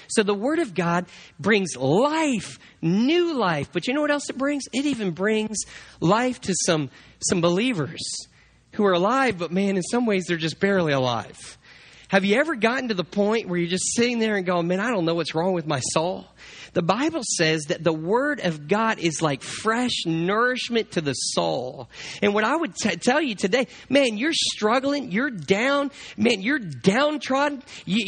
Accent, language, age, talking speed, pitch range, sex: American, English, 40-59, 190 wpm, 180-250 Hz, male